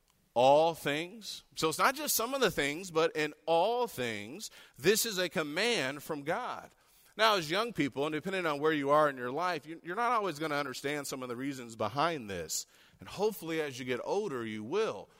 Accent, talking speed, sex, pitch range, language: American, 210 wpm, male, 145-185 Hz, English